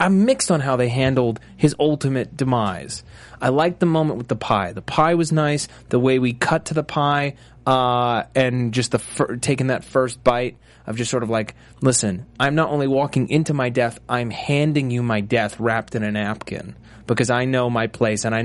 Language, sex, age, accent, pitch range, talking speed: English, male, 30-49, American, 120-165 Hz, 205 wpm